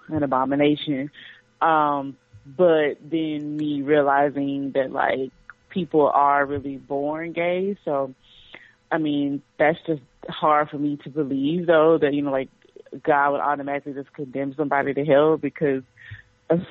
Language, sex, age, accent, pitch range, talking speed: English, female, 20-39, American, 140-175 Hz, 140 wpm